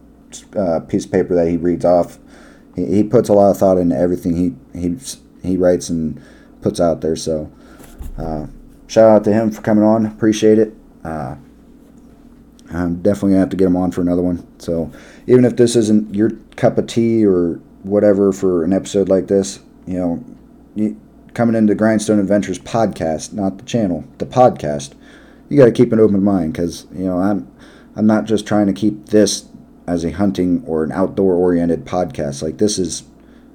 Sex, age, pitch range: male, 30-49, 85-110 Hz